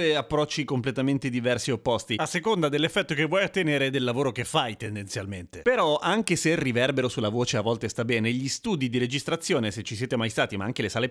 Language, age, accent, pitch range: Italian, 30-49, native, 120-160 Hz